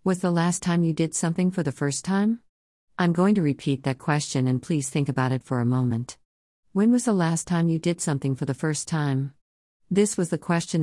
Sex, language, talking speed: female, English, 225 wpm